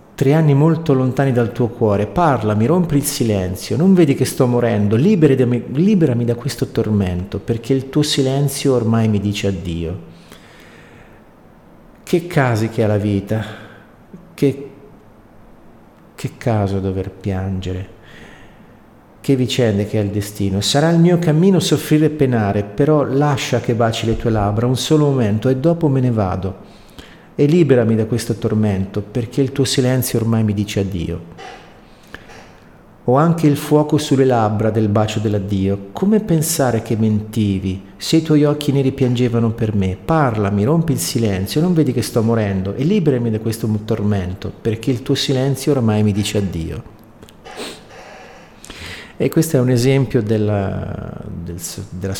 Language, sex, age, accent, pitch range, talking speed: Italian, male, 50-69, native, 100-140 Hz, 150 wpm